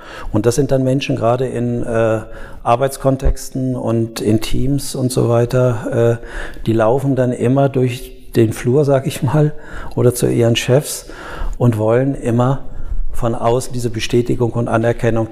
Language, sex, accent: German, male, German